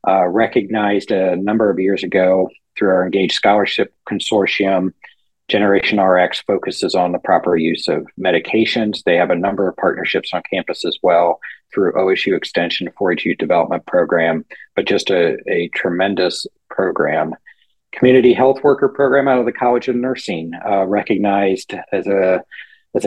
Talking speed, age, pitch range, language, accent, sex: 155 wpm, 50-69, 90-120 Hz, English, American, male